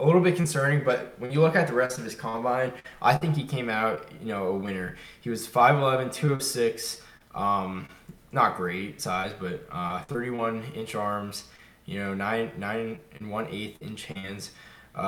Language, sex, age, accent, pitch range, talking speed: English, male, 10-29, American, 105-130 Hz, 190 wpm